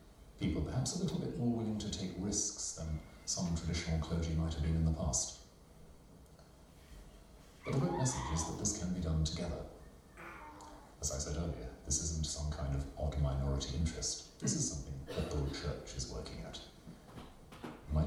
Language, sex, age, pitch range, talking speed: Swedish, male, 40-59, 70-85 Hz, 175 wpm